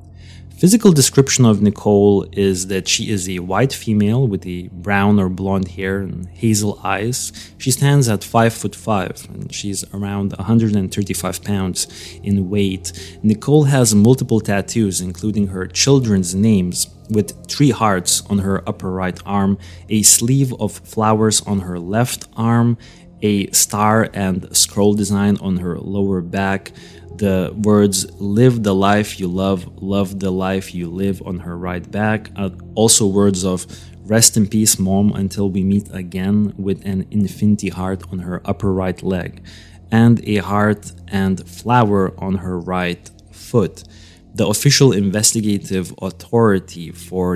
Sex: male